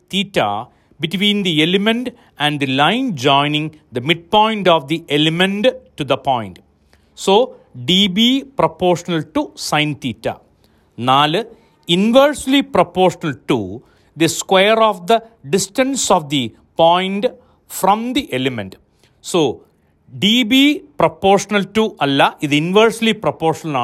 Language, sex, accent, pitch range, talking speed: Malayalam, male, native, 150-210 Hz, 115 wpm